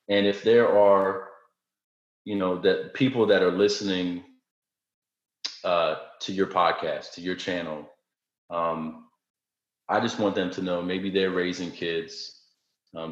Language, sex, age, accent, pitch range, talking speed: English, male, 30-49, American, 85-100 Hz, 135 wpm